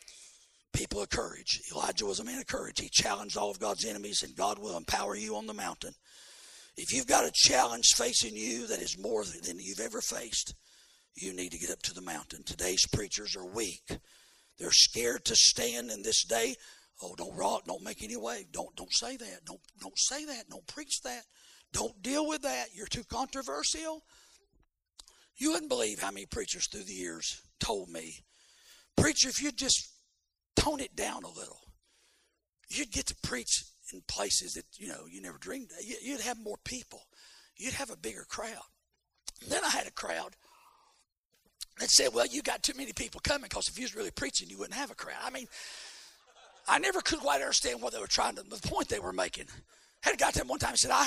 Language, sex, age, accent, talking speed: English, male, 50-69, American, 205 wpm